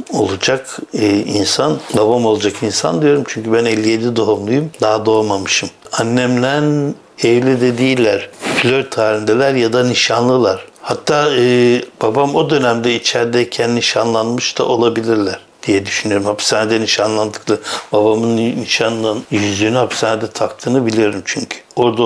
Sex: male